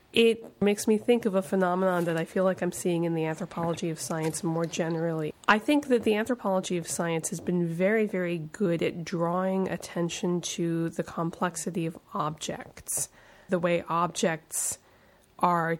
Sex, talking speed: female, 165 wpm